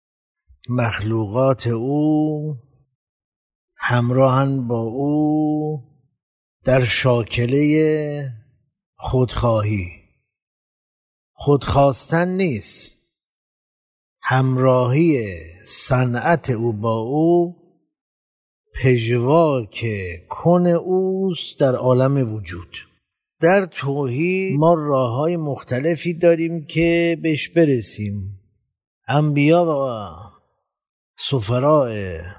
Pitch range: 105-155 Hz